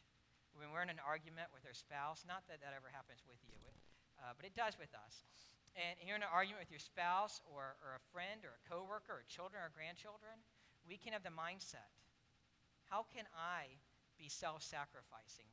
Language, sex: English, male